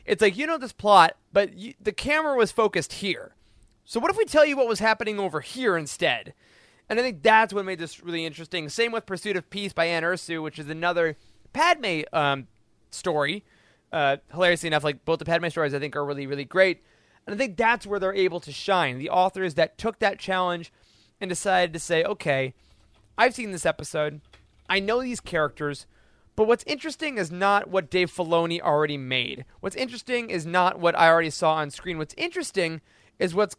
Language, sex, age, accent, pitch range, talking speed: English, male, 20-39, American, 160-210 Hz, 200 wpm